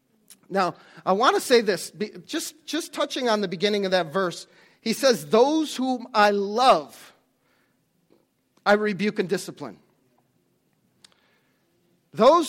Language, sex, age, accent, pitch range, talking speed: English, male, 40-59, American, 205-270 Hz, 125 wpm